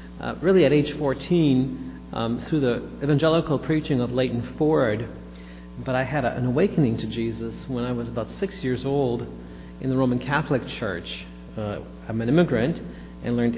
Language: English